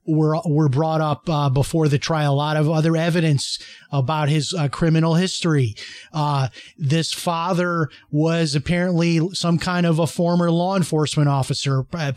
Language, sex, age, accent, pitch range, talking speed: English, male, 30-49, American, 155-180 Hz, 160 wpm